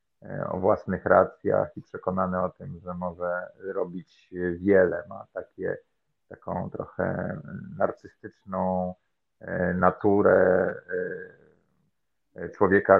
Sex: male